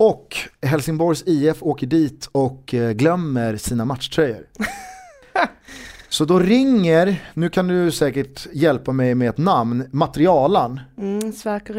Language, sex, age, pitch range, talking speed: Swedish, male, 30-49, 120-170 Hz, 120 wpm